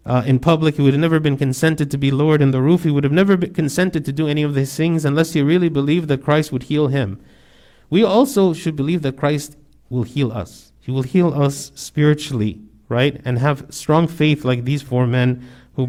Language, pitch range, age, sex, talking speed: English, 130-165 Hz, 50-69, male, 225 wpm